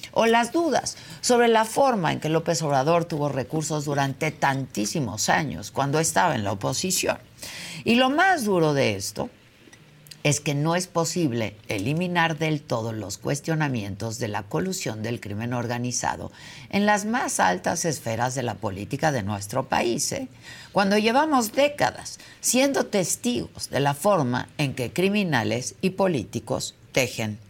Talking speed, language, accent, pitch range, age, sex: 145 wpm, Spanish, Mexican, 125-190 Hz, 50-69, female